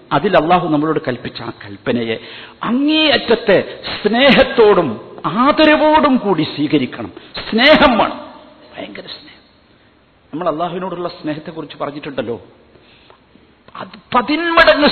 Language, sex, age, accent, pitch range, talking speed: Malayalam, male, 50-69, native, 135-175 Hz, 75 wpm